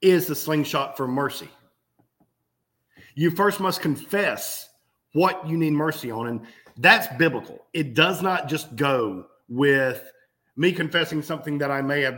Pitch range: 120-160 Hz